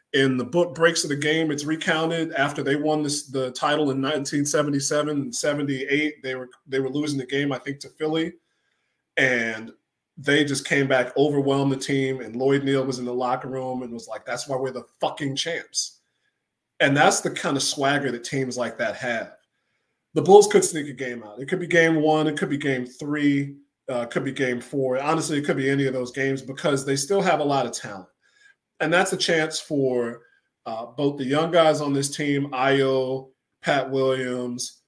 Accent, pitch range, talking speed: American, 130-150 Hz, 210 wpm